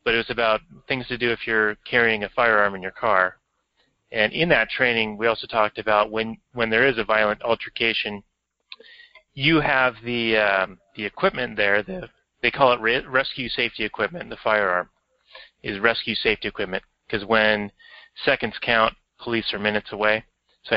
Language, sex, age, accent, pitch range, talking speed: English, male, 30-49, American, 100-120 Hz, 170 wpm